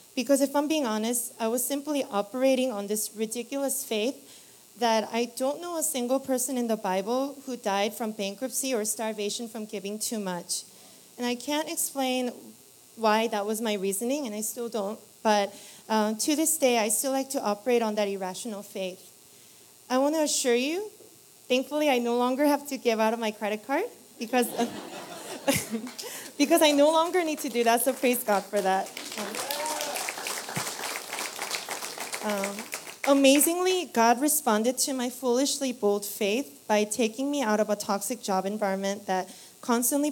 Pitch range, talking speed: 210-265 Hz, 165 wpm